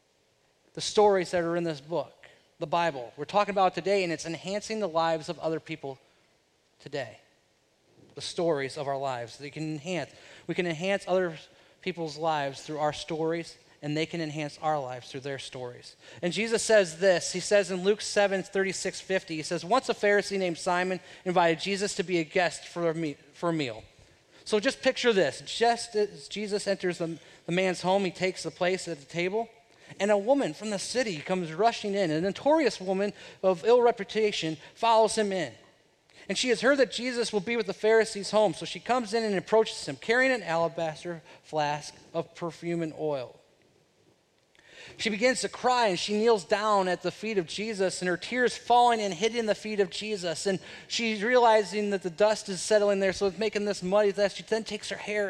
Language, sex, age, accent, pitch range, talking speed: English, male, 30-49, American, 165-210 Hz, 195 wpm